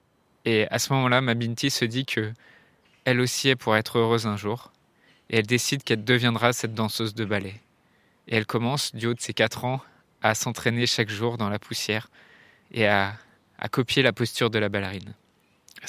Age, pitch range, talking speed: 20-39, 110-125 Hz, 195 wpm